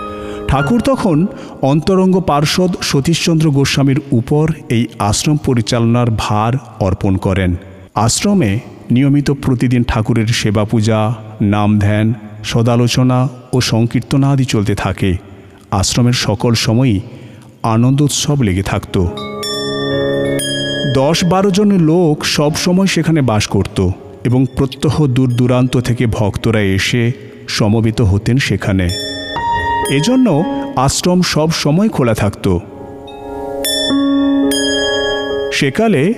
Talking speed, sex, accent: 95 wpm, male, native